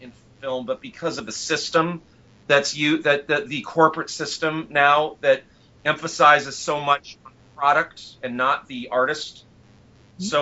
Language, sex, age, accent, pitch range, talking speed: English, male, 40-59, American, 125-145 Hz, 140 wpm